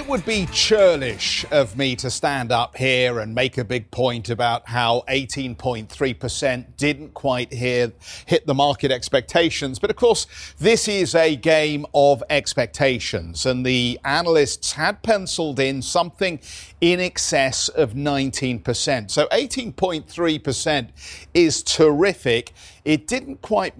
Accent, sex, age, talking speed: British, male, 50-69, 130 wpm